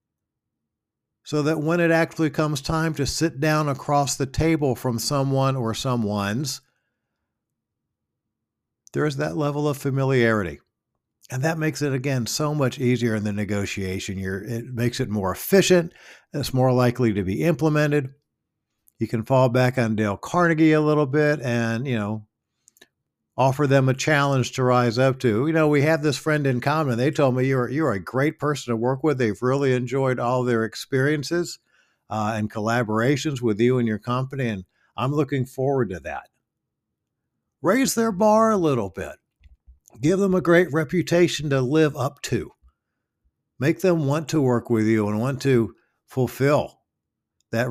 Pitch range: 115-150 Hz